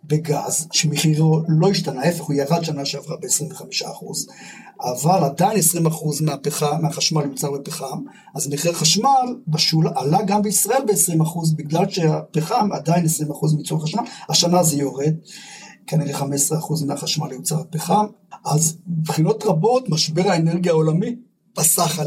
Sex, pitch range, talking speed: male, 155-185 Hz, 125 wpm